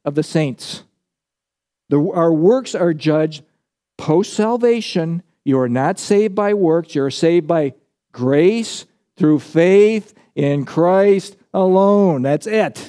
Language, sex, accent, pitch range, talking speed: English, male, American, 155-200 Hz, 120 wpm